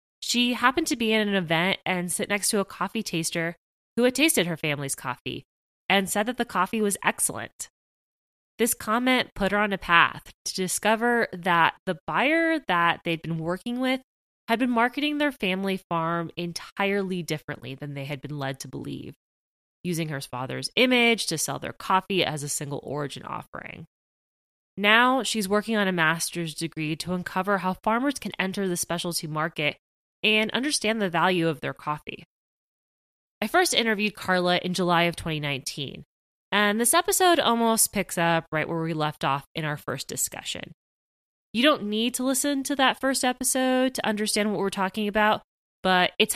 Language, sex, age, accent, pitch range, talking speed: English, female, 20-39, American, 170-230 Hz, 175 wpm